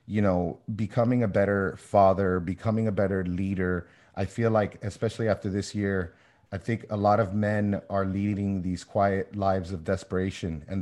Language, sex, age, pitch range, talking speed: English, male, 30-49, 95-110 Hz, 170 wpm